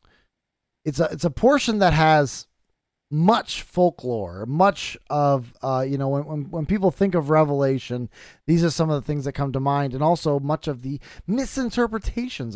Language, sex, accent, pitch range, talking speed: English, male, American, 115-165 Hz, 175 wpm